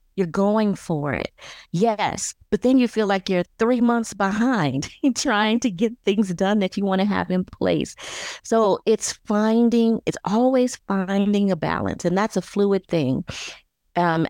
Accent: American